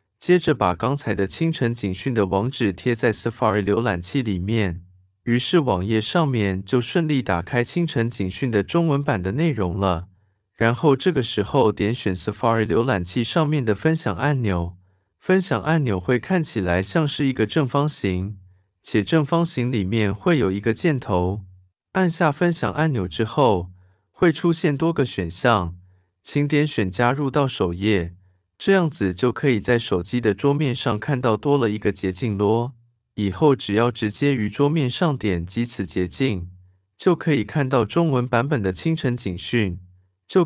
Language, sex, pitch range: Chinese, male, 95-140 Hz